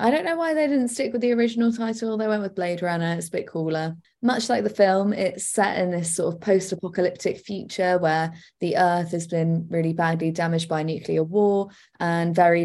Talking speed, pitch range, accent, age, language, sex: 215 wpm, 155-175 Hz, British, 20-39, English, female